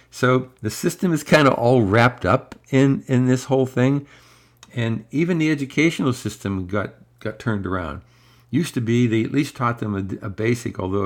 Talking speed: 190 wpm